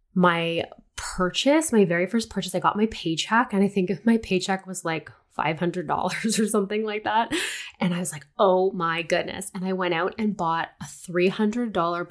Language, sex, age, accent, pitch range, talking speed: English, female, 20-39, American, 170-215 Hz, 190 wpm